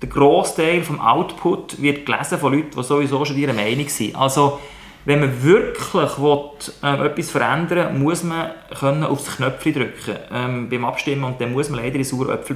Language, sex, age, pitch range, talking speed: German, male, 30-49, 135-165 Hz, 175 wpm